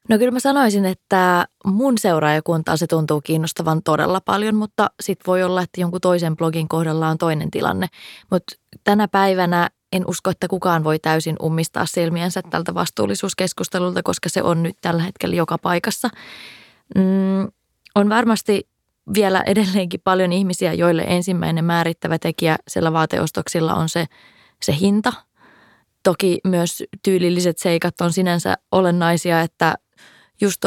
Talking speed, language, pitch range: 135 wpm, Finnish, 165-190 Hz